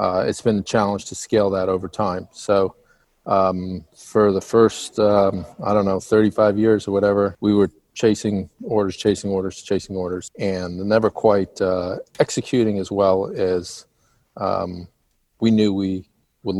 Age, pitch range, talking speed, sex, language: 40-59, 95-110 Hz, 160 wpm, male, English